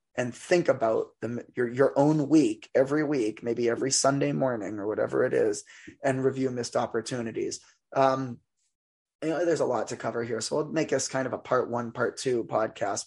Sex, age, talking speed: male, 20-39, 195 wpm